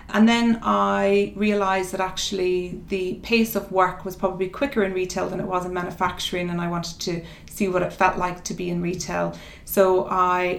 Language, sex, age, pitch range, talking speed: English, female, 30-49, 180-195 Hz, 200 wpm